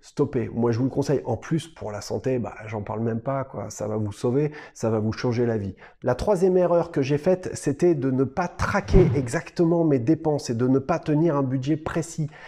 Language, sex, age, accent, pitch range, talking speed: French, male, 30-49, French, 125-165 Hz, 235 wpm